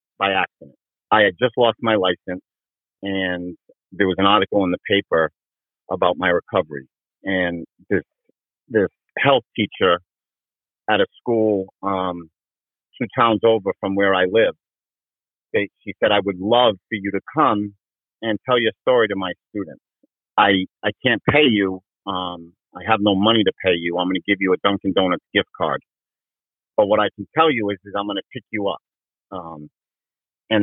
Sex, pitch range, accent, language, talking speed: male, 95-110 Hz, American, English, 180 wpm